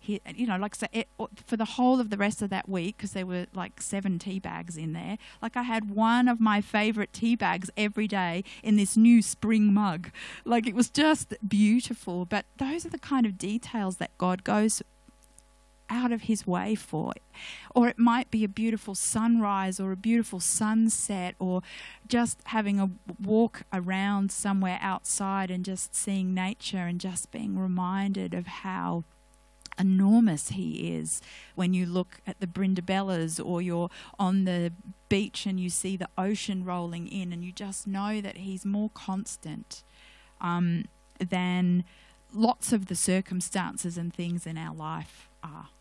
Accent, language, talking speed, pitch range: Australian, English, 170 wpm, 180-220 Hz